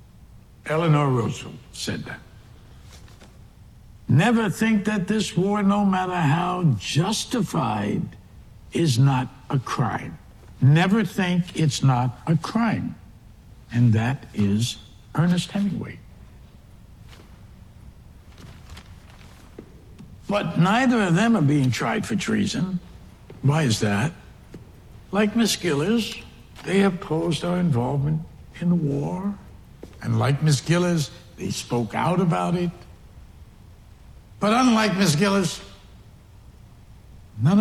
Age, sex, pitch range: 60-79, male, 120-200 Hz